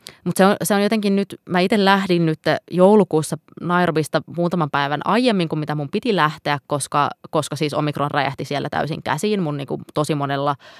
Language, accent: Finnish, native